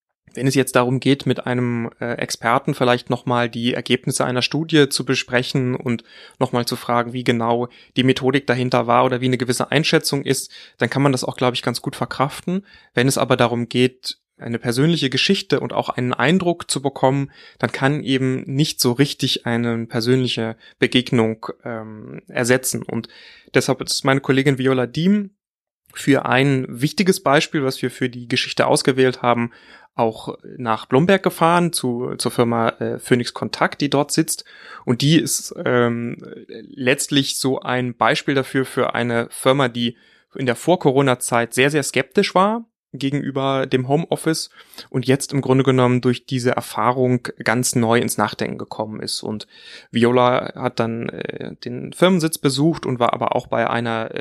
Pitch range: 120-140 Hz